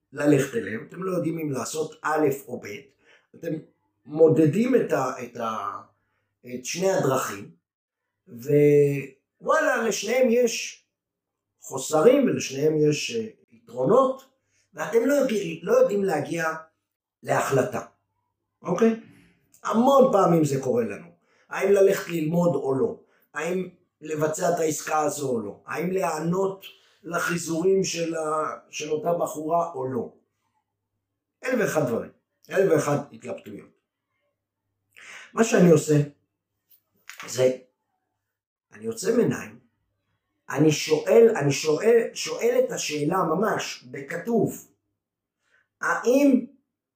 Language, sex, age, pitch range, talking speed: Hebrew, male, 50-69, 130-195 Hz, 105 wpm